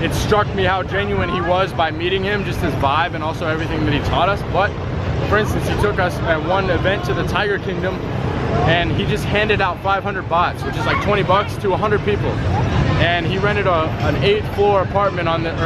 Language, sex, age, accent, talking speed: English, male, 20-39, American, 220 wpm